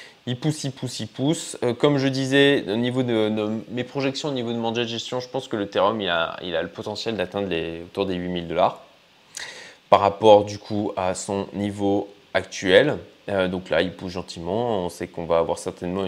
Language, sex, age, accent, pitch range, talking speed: French, male, 20-39, French, 95-130 Hz, 215 wpm